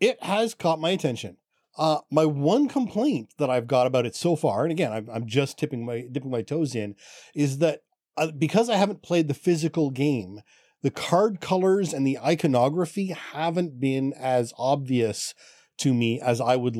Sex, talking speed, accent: male, 175 wpm, American